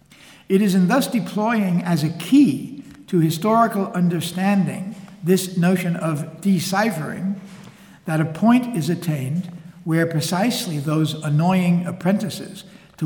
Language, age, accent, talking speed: English, 60-79, American, 120 wpm